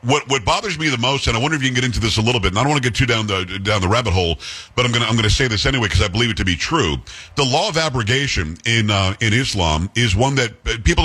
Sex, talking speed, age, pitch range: male, 315 wpm, 50-69, 105-140 Hz